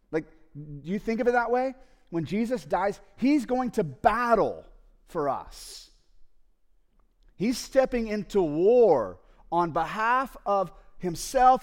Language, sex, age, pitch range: English, male, 30-49, 165-255 Hz